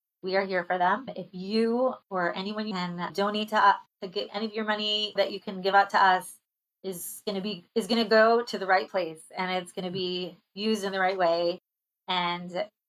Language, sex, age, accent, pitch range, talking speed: English, female, 20-39, American, 180-205 Hz, 235 wpm